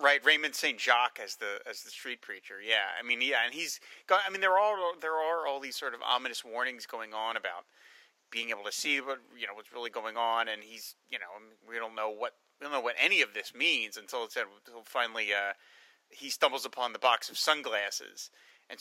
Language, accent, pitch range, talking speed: English, American, 130-215 Hz, 230 wpm